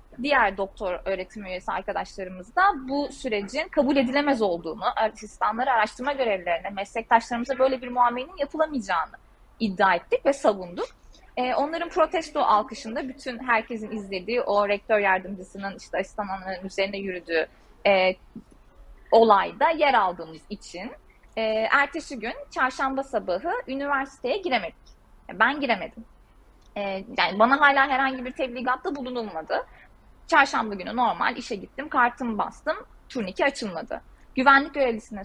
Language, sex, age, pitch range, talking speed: Turkish, female, 30-49, 200-280 Hz, 110 wpm